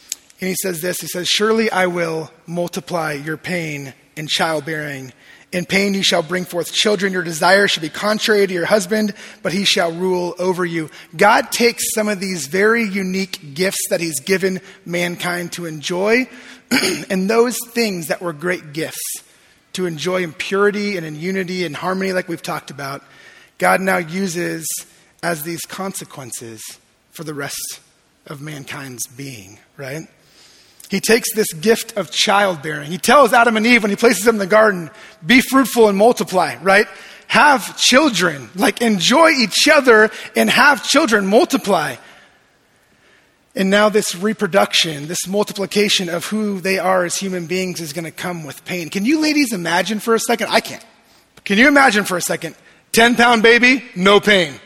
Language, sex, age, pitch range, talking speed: English, male, 30-49, 170-215 Hz, 170 wpm